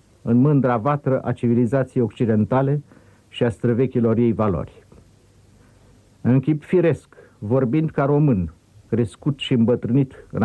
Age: 50-69